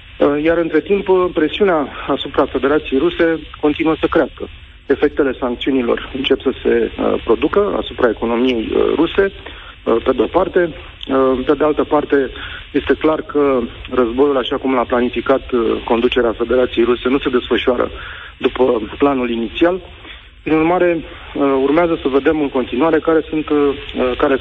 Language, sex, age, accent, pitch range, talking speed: Romanian, male, 40-59, native, 125-155 Hz, 125 wpm